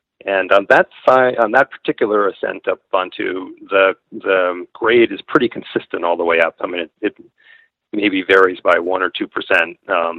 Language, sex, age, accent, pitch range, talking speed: English, male, 40-59, American, 95-135 Hz, 190 wpm